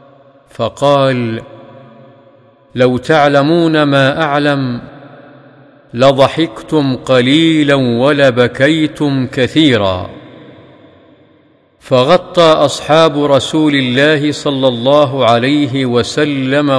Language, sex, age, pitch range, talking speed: Arabic, male, 50-69, 125-145 Hz, 60 wpm